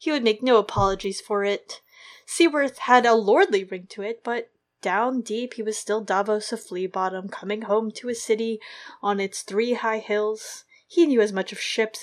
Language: English